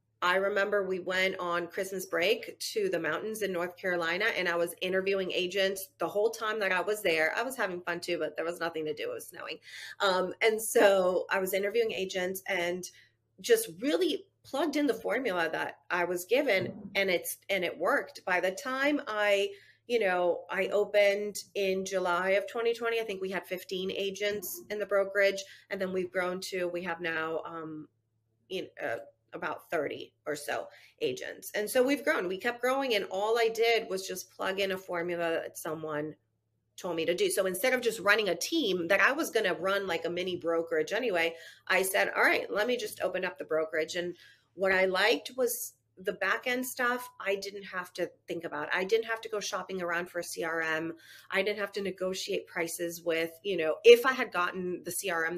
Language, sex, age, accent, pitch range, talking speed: English, female, 30-49, American, 175-210 Hz, 205 wpm